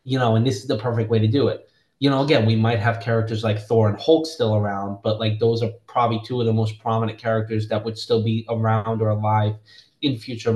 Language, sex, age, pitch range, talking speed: English, male, 20-39, 110-125 Hz, 250 wpm